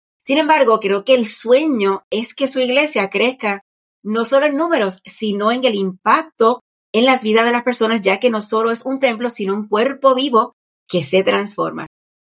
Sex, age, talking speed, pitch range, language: female, 40-59, 190 wpm, 195-245 Hz, Spanish